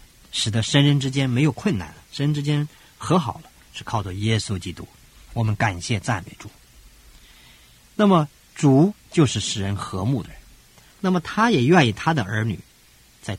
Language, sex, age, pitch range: Chinese, male, 50-69, 95-135 Hz